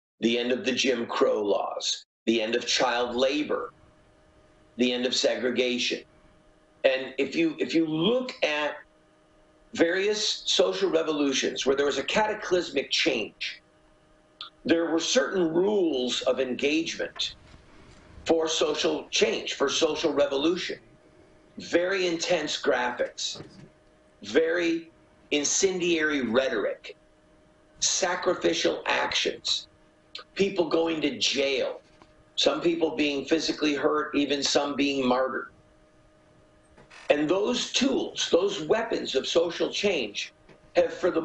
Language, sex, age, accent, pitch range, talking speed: English, male, 50-69, American, 140-200 Hz, 110 wpm